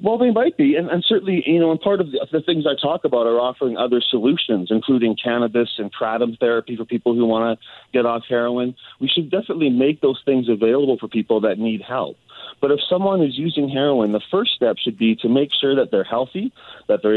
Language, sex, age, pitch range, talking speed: English, male, 40-59, 115-150 Hz, 230 wpm